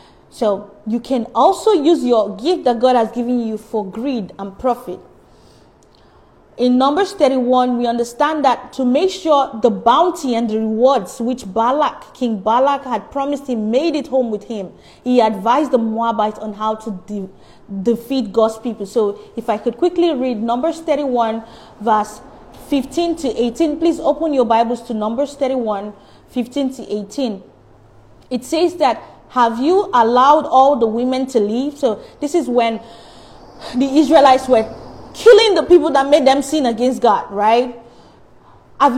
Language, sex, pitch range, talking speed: English, female, 225-295 Hz, 160 wpm